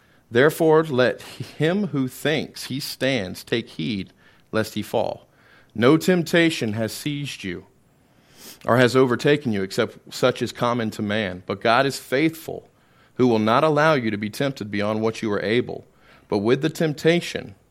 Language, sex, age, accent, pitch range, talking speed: English, male, 40-59, American, 105-140 Hz, 165 wpm